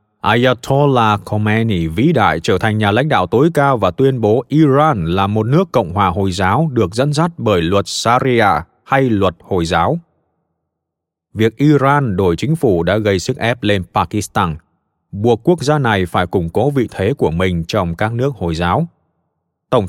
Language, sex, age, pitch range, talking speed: Vietnamese, male, 20-39, 95-135 Hz, 180 wpm